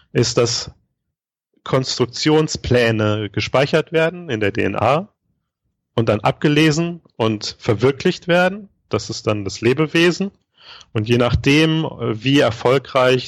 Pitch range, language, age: 105-130 Hz, German, 40-59